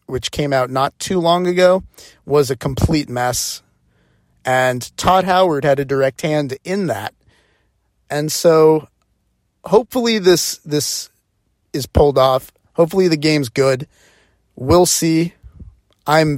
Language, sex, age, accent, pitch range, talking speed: English, male, 30-49, American, 120-155 Hz, 130 wpm